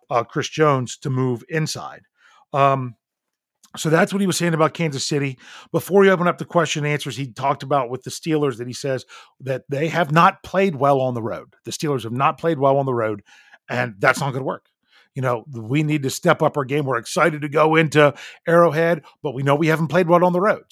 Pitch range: 125-160 Hz